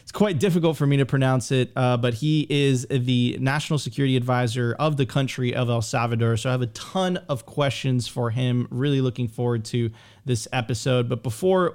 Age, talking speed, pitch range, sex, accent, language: 30-49, 195 wpm, 125-150 Hz, male, American, English